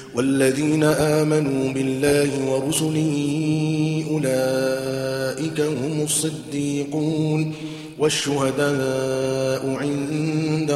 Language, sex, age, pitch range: Arabic, male, 40-59, 135-155 Hz